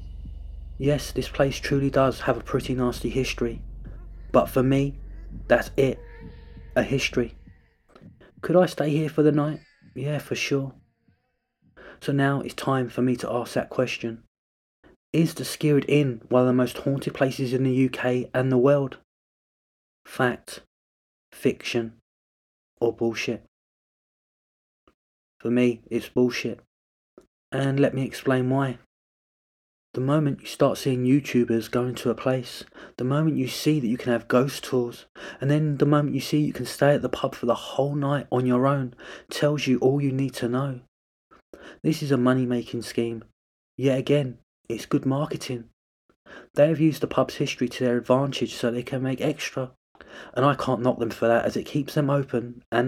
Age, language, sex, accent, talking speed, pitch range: 30-49, English, male, British, 170 wpm, 120-140 Hz